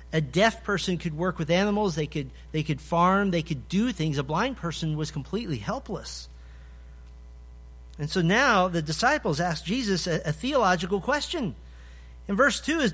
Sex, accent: male, American